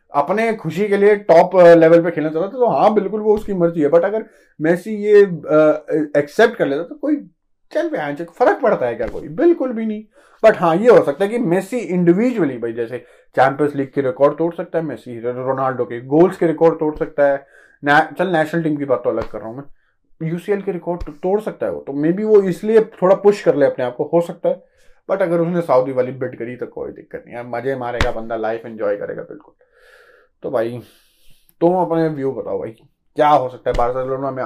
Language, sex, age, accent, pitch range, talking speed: Hindi, male, 30-49, native, 130-200 Hz, 225 wpm